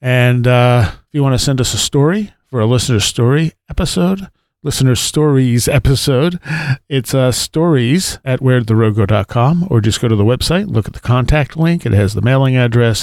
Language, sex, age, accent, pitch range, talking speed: English, male, 40-59, American, 110-140 Hz, 190 wpm